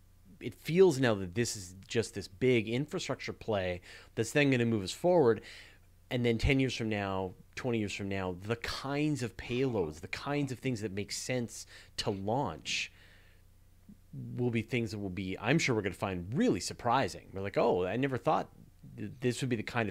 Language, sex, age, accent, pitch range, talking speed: English, male, 30-49, American, 95-125 Hz, 200 wpm